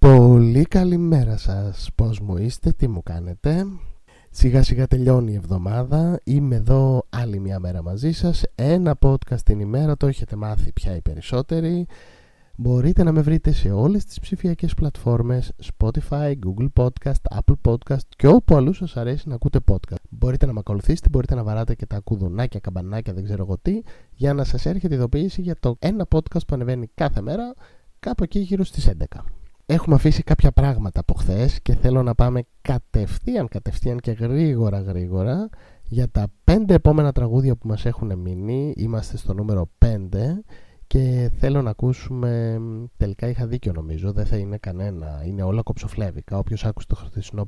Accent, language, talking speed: native, Greek, 170 wpm